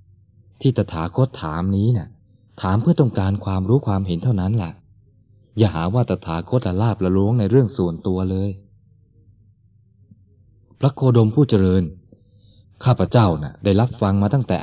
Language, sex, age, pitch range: Thai, male, 20-39, 95-110 Hz